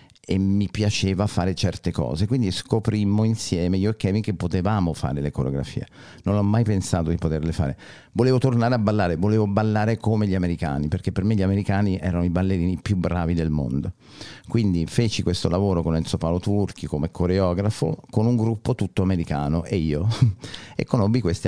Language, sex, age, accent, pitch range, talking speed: Italian, male, 50-69, native, 85-105 Hz, 180 wpm